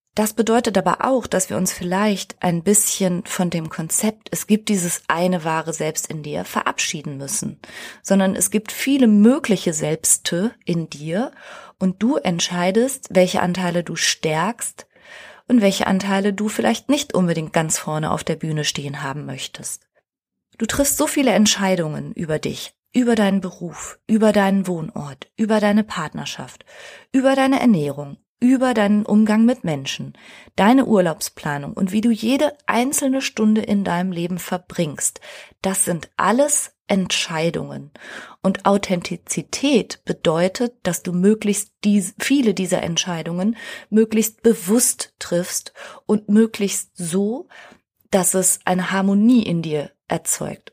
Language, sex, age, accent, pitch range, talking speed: German, female, 30-49, German, 175-220 Hz, 135 wpm